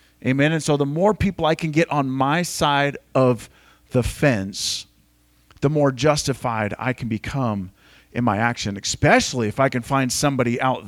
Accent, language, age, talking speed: American, English, 40-59, 170 wpm